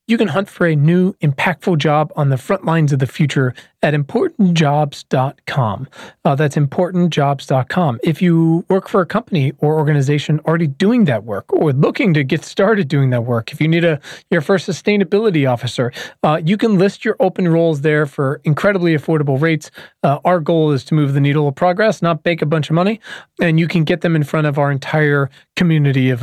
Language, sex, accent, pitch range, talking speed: English, male, American, 140-175 Hz, 200 wpm